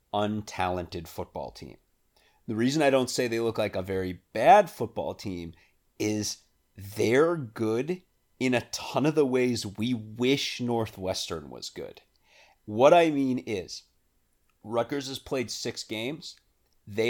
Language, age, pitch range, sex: English, 30-49, 105-135 Hz, male